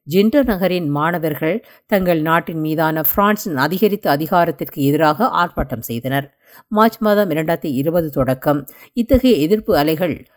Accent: native